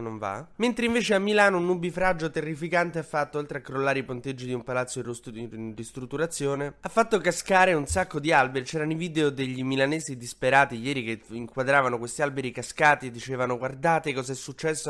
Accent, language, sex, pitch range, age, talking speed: native, Italian, male, 120-150 Hz, 20-39, 185 wpm